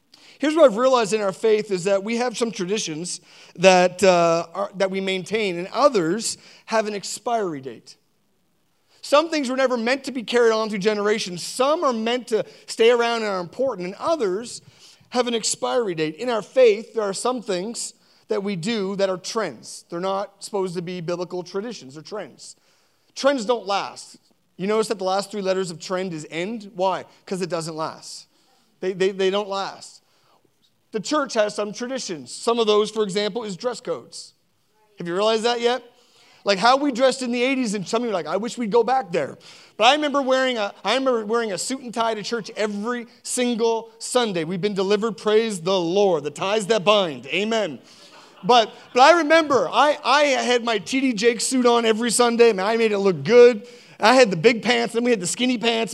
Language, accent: English, American